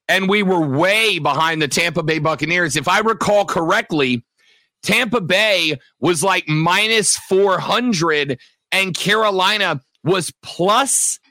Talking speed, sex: 120 wpm, male